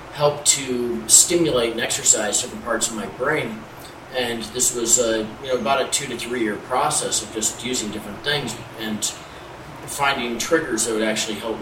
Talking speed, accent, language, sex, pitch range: 180 wpm, American, English, male, 110-125 Hz